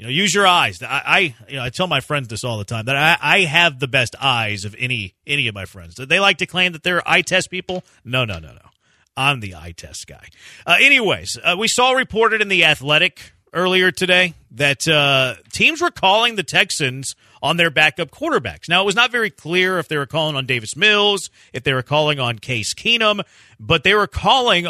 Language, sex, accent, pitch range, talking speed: English, male, American, 130-180 Hz, 230 wpm